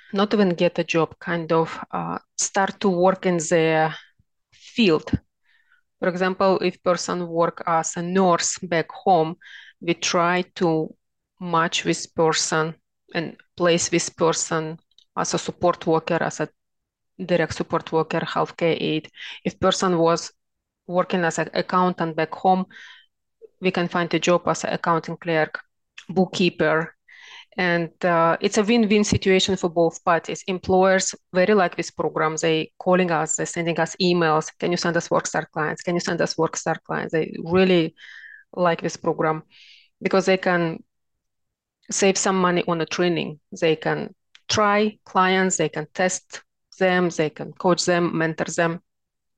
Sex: female